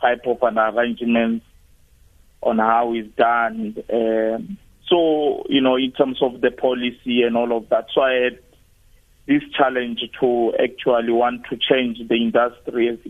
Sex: male